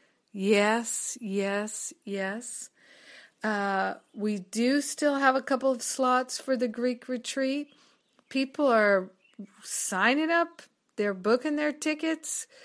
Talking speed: 115 wpm